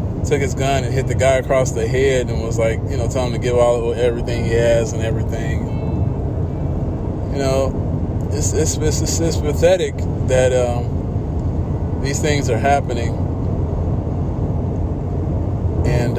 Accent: American